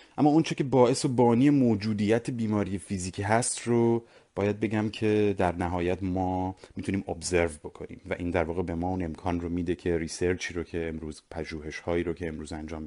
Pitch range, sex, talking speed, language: 80-100 Hz, male, 185 wpm, Persian